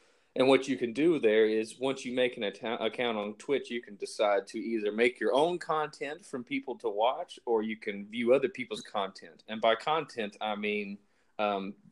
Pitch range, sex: 110-155 Hz, male